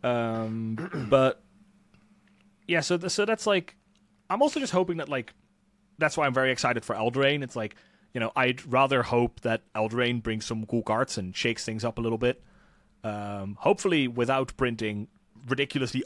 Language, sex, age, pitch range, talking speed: English, male, 30-49, 110-155 Hz, 170 wpm